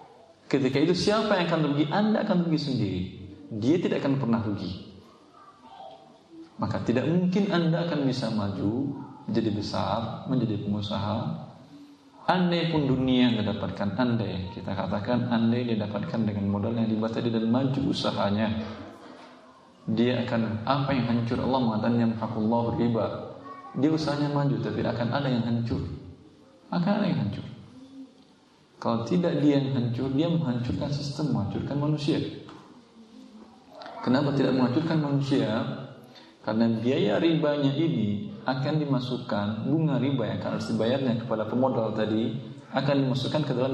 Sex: male